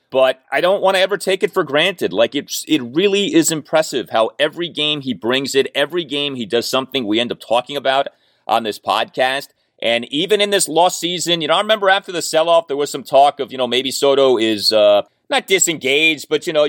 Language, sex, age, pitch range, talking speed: English, male, 30-49, 125-190 Hz, 225 wpm